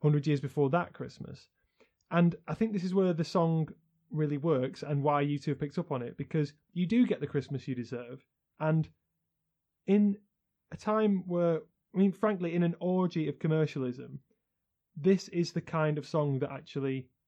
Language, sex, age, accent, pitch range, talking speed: English, male, 30-49, British, 135-165 Hz, 185 wpm